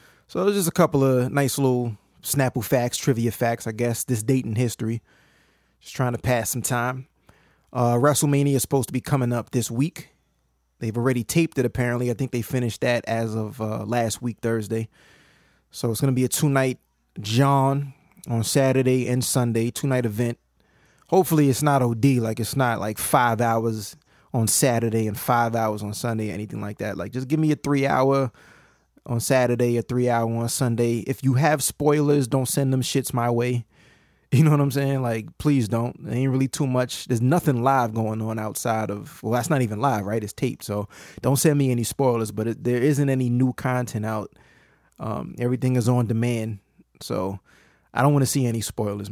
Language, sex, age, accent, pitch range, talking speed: English, male, 20-39, American, 115-135 Hz, 195 wpm